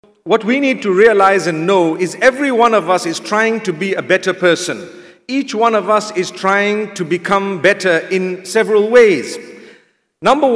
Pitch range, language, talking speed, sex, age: 185-225 Hz, English, 180 wpm, male, 50-69